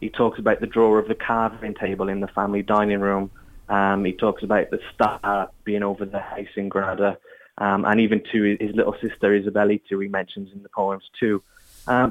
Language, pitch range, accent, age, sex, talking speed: English, 100-120 Hz, British, 20-39, male, 210 wpm